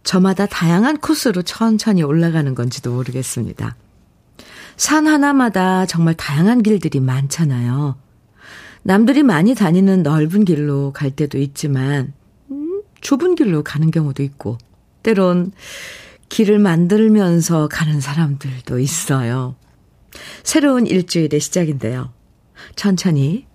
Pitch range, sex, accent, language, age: 145-200 Hz, female, native, Korean, 50-69